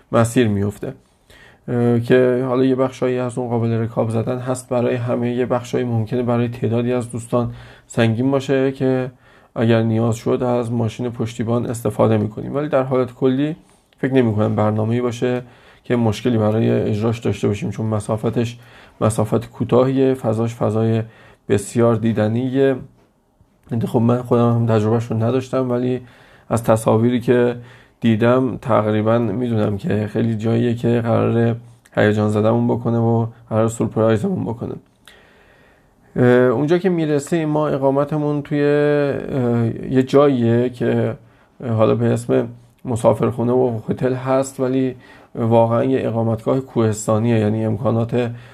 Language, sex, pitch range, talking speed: Persian, male, 115-130 Hz, 125 wpm